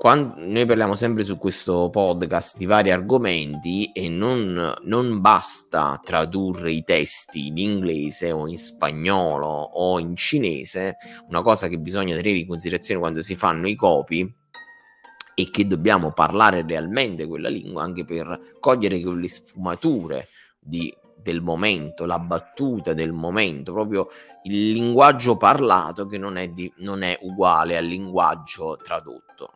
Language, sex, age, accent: Italian, male, 20-39, native